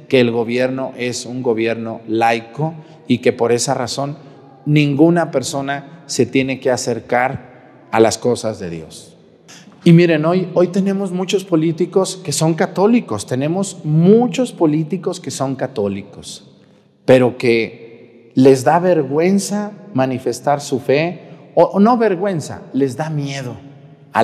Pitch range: 115-160 Hz